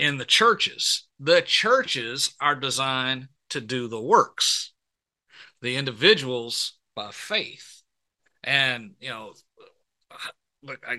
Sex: male